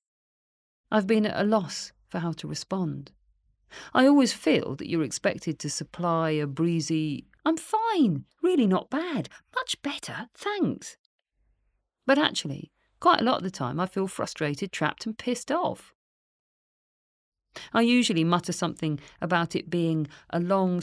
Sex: female